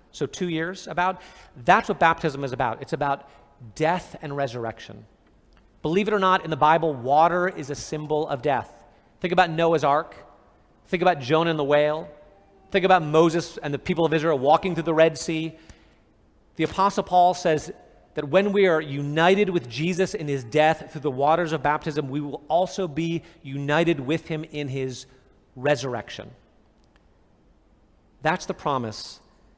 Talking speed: 165 wpm